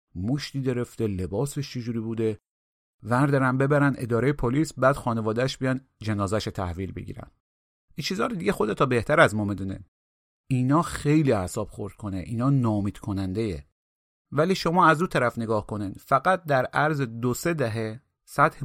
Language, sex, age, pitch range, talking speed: Persian, male, 30-49, 110-140 Hz, 140 wpm